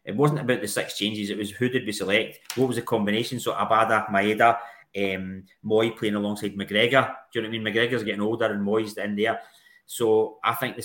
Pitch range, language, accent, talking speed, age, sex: 100-120 Hz, English, British, 225 wpm, 30-49, male